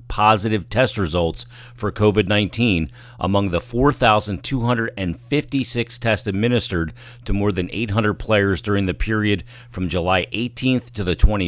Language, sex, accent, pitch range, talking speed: English, male, American, 90-115 Hz, 125 wpm